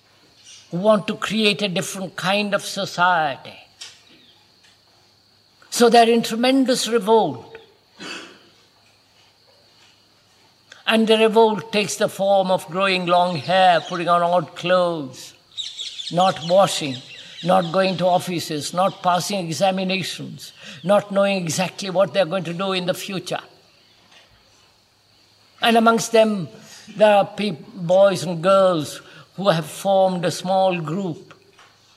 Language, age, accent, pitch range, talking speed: English, 60-79, Indian, 155-195 Hz, 120 wpm